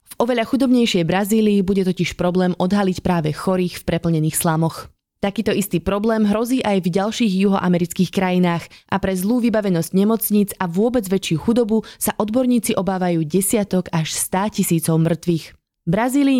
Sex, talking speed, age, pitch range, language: female, 145 wpm, 20-39, 170-215 Hz, Slovak